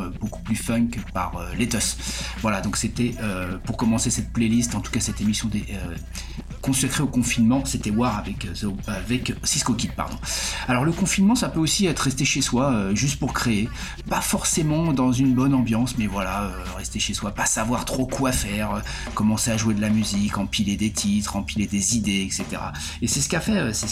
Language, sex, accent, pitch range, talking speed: French, male, French, 100-120 Hz, 200 wpm